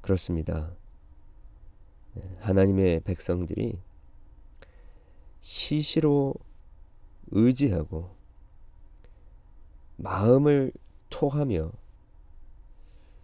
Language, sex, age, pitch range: Korean, male, 40-59, 80-105 Hz